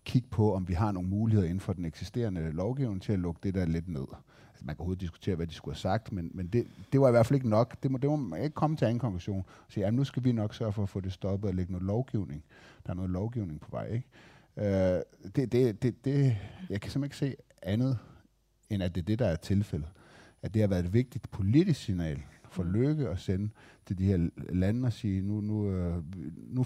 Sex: male